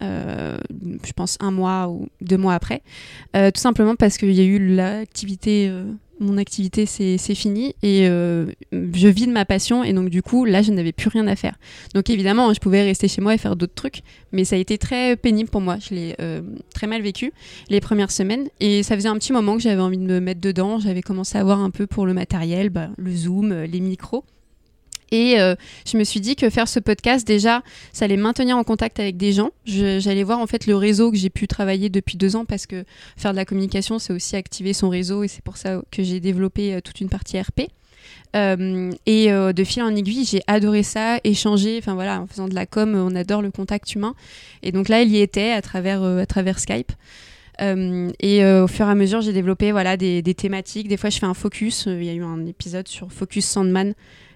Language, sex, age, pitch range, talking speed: French, female, 20-39, 190-215 Hz, 240 wpm